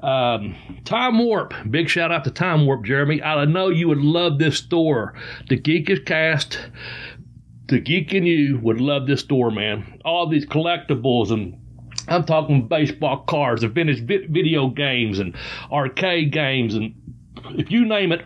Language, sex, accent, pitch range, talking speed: English, male, American, 130-165 Hz, 165 wpm